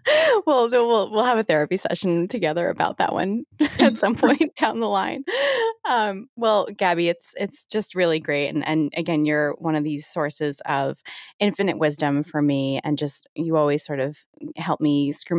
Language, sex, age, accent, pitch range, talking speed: English, female, 20-39, American, 150-180 Hz, 185 wpm